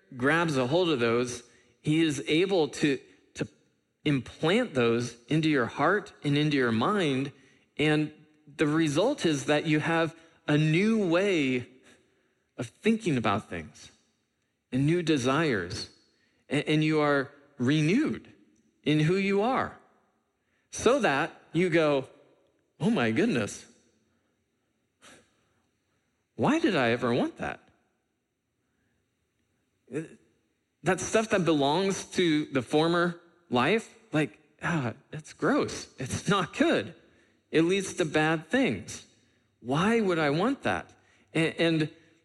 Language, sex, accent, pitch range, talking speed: English, male, American, 125-165 Hz, 120 wpm